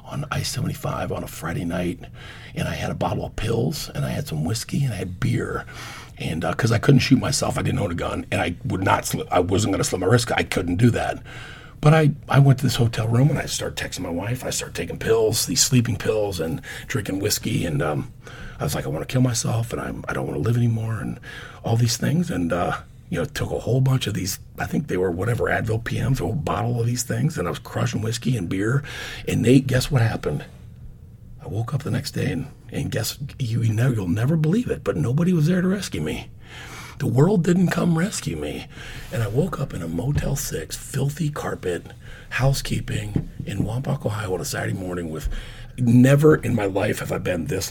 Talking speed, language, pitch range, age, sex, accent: 235 wpm, English, 110-135 Hz, 40-59, male, American